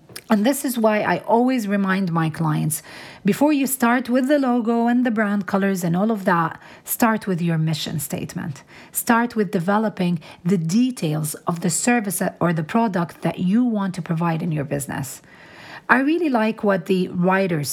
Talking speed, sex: 180 wpm, female